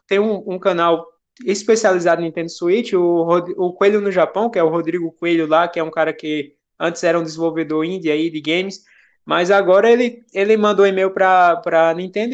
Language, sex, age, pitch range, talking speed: Portuguese, male, 20-39, 180-220 Hz, 200 wpm